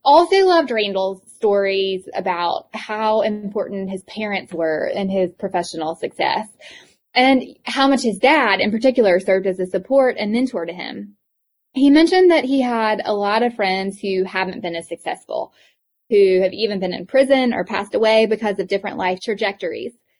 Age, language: 20-39, English